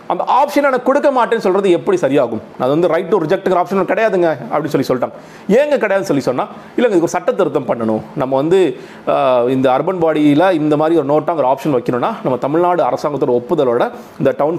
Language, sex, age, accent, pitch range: Tamil, male, 40-59, native, 145-195 Hz